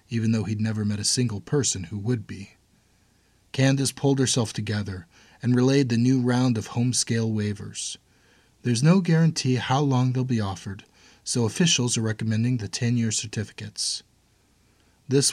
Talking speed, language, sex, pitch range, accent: 155 wpm, English, male, 100-125 Hz, American